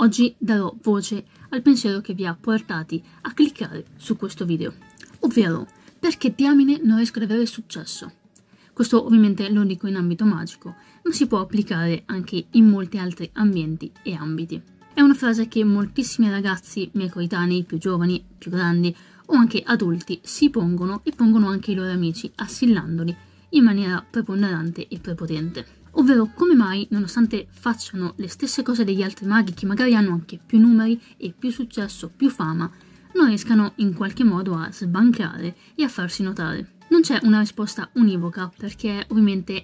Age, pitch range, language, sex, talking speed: 20-39, 180-230 Hz, Italian, female, 165 wpm